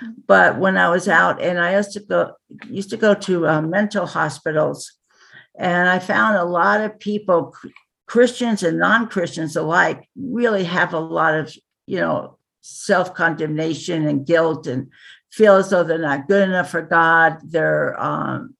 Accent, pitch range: American, 160-195 Hz